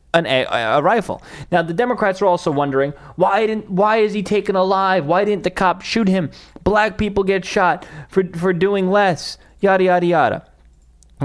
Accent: American